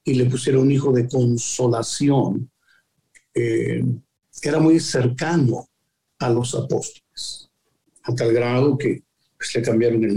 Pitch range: 115-140 Hz